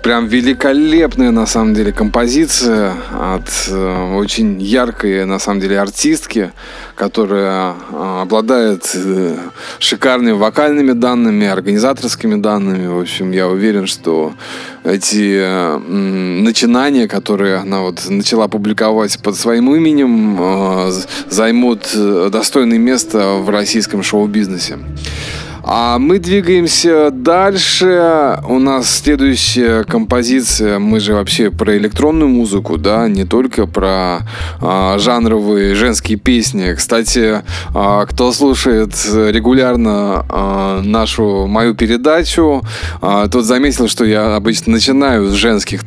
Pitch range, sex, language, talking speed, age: 95-125 Hz, male, Russian, 105 wpm, 20-39